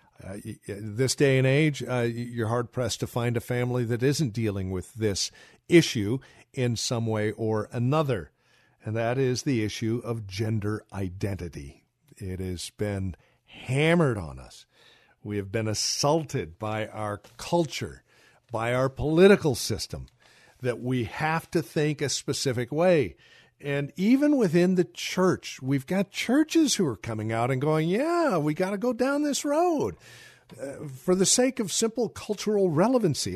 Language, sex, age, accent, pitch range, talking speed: English, male, 50-69, American, 115-175 Hz, 155 wpm